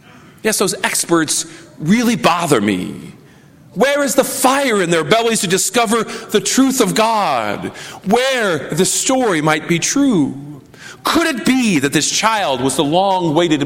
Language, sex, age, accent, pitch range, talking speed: English, male, 40-59, American, 160-220 Hz, 150 wpm